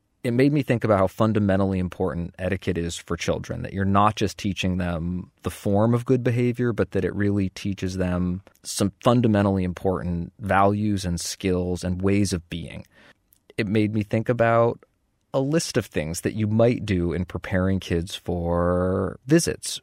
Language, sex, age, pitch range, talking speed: English, male, 20-39, 95-125 Hz, 175 wpm